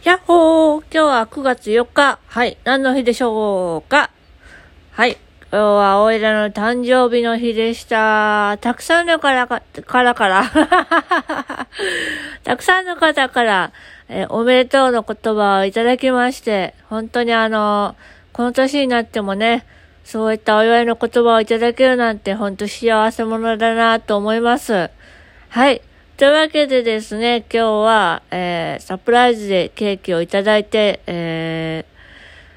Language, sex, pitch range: Japanese, female, 190-255 Hz